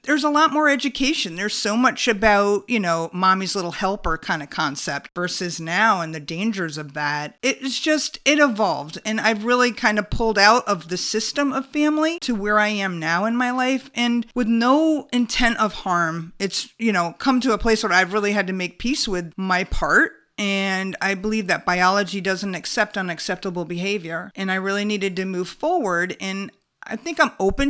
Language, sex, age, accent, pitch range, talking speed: English, female, 50-69, American, 180-240 Hz, 200 wpm